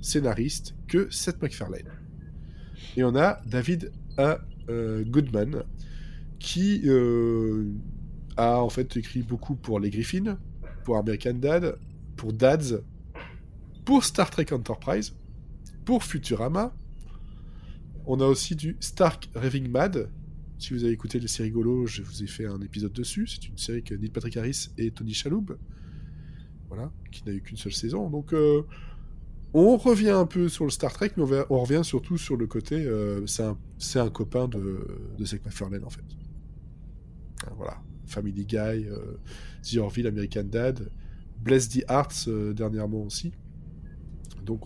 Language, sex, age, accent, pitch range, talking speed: French, male, 20-39, French, 105-140 Hz, 150 wpm